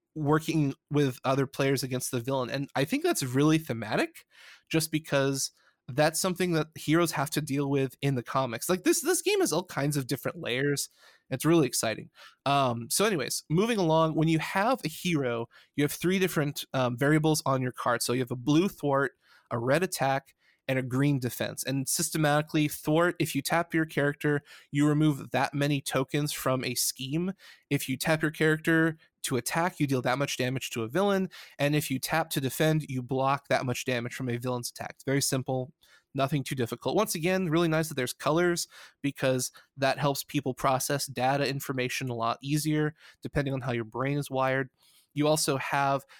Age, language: 20-39, English